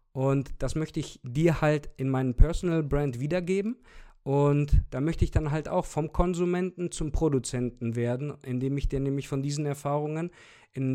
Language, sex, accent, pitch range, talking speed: German, male, German, 130-150 Hz, 170 wpm